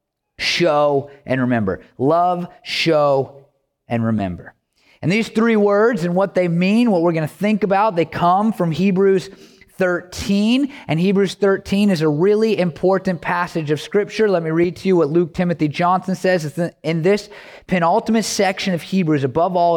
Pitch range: 140-180 Hz